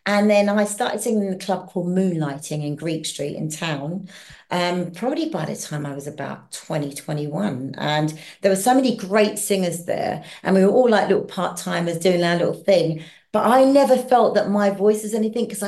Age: 40-59